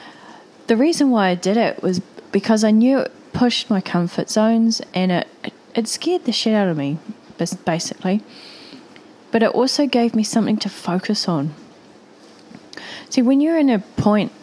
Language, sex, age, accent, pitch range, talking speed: English, female, 20-39, Australian, 175-230 Hz, 165 wpm